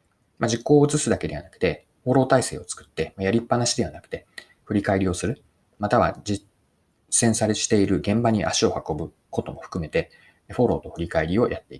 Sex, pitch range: male, 95-145 Hz